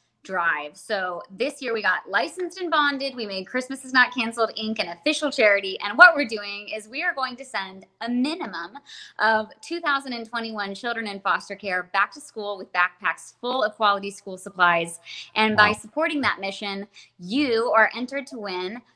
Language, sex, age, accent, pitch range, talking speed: English, female, 20-39, American, 195-245 Hz, 180 wpm